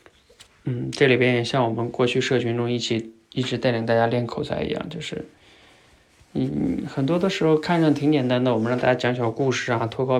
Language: Chinese